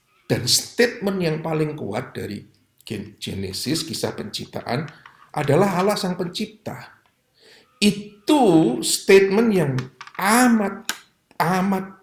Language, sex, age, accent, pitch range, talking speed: Indonesian, male, 50-69, native, 120-170 Hz, 85 wpm